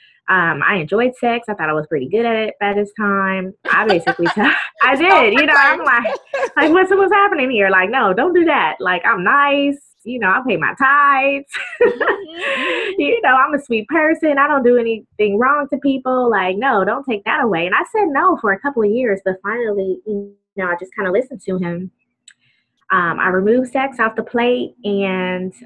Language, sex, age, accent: English, female, 20-39, American